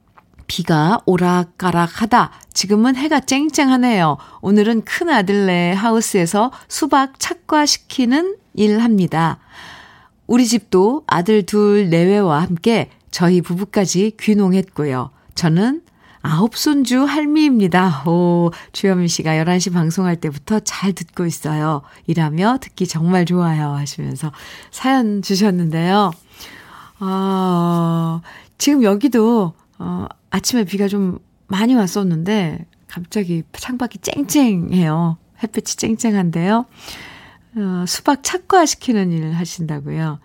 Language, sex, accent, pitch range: Korean, female, native, 165-220 Hz